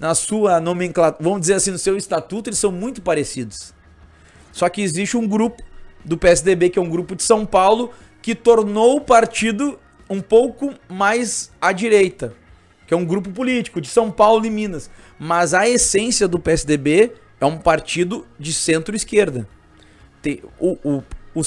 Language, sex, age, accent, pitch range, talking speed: Portuguese, male, 30-49, Brazilian, 160-200 Hz, 160 wpm